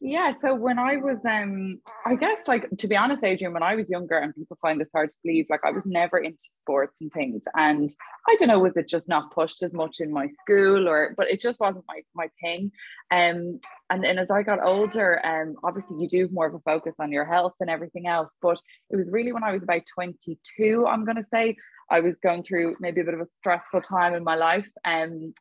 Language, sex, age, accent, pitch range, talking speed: English, female, 20-39, Irish, 160-210 Hz, 250 wpm